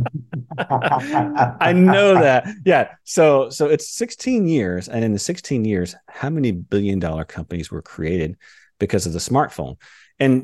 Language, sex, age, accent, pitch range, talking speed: English, male, 40-59, American, 85-120 Hz, 150 wpm